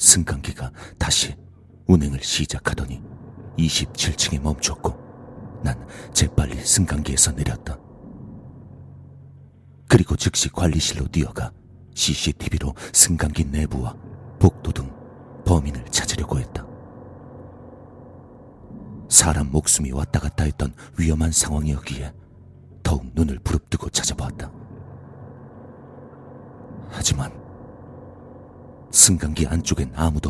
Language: Korean